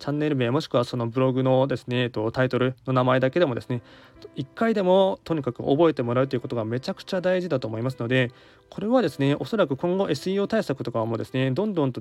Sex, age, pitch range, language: male, 20-39, 120-150 Hz, Japanese